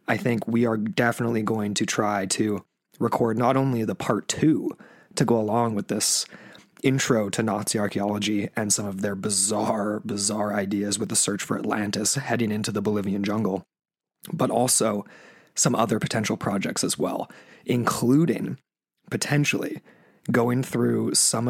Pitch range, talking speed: 105-125 Hz, 150 wpm